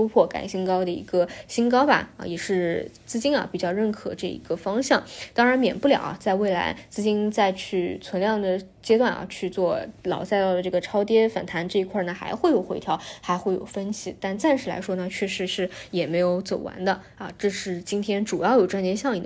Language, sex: Chinese, female